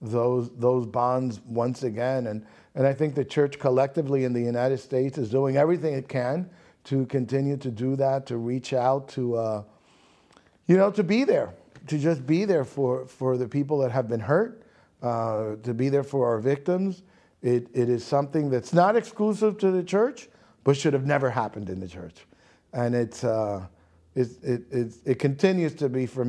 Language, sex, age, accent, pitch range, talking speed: English, male, 50-69, American, 120-155 Hz, 190 wpm